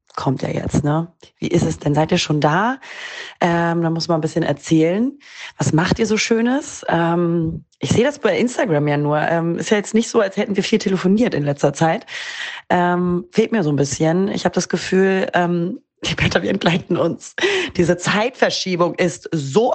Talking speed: 200 wpm